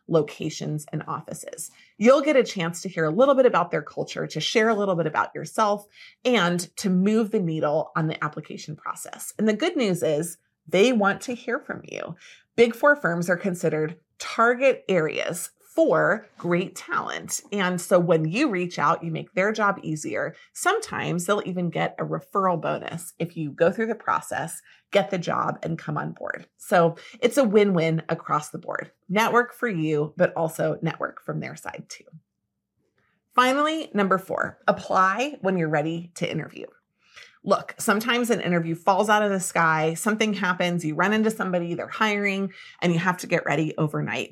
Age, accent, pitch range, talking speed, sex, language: 30-49, American, 165-220 Hz, 180 wpm, female, English